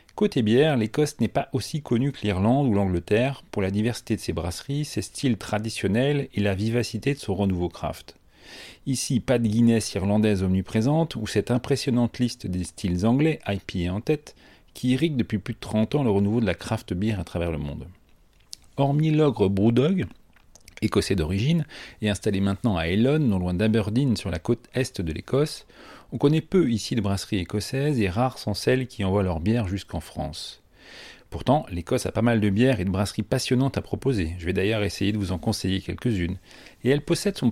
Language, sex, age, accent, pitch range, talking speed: French, male, 40-59, French, 95-130 Hz, 195 wpm